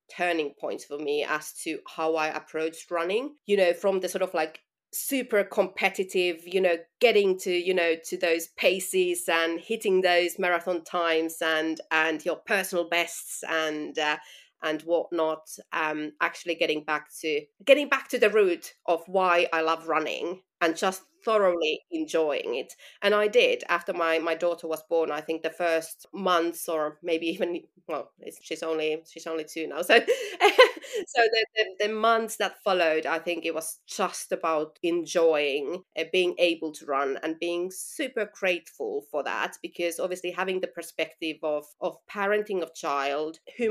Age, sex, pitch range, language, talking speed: 30-49, female, 160-215 Hz, English, 170 wpm